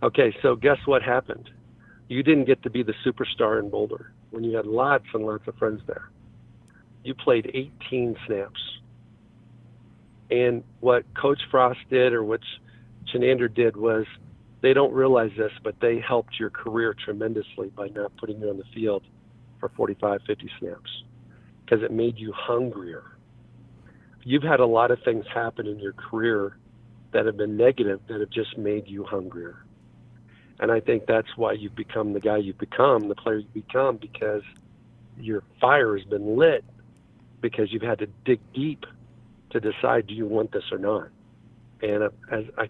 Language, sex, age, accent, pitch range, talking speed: English, male, 50-69, American, 110-120 Hz, 170 wpm